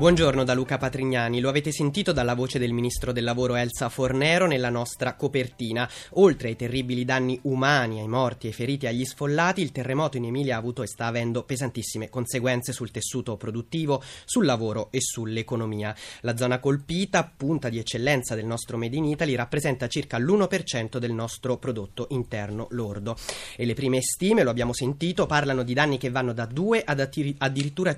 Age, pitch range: 30-49, 120-155 Hz